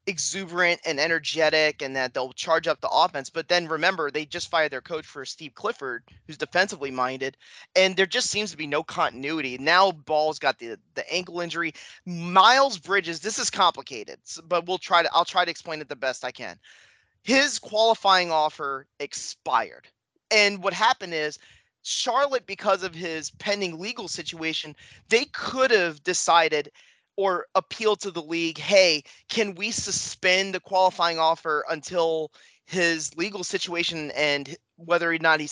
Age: 30-49